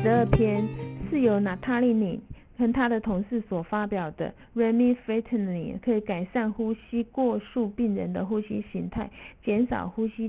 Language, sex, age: Chinese, female, 50-69